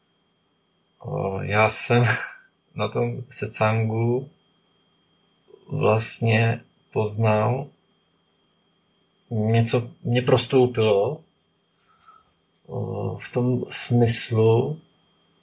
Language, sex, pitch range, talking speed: Czech, male, 105-130 Hz, 55 wpm